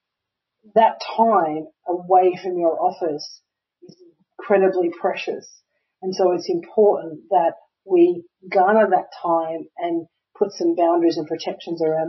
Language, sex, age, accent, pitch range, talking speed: English, female, 40-59, Australian, 170-210 Hz, 125 wpm